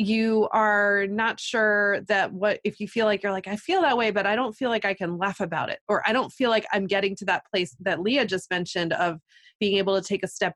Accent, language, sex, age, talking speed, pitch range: American, English, female, 20-39, 265 wpm, 185-210 Hz